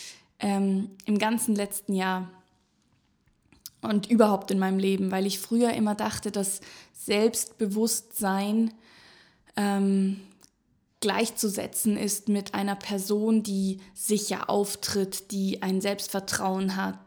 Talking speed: 105 wpm